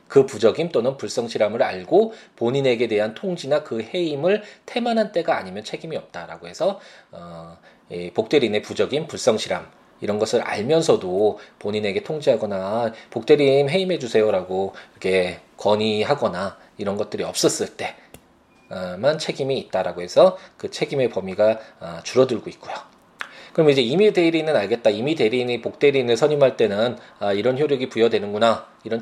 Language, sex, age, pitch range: Korean, male, 20-39, 105-160 Hz